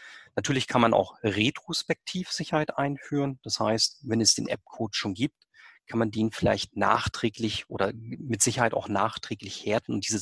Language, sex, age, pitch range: German, male, 30-49, 105-140 Hz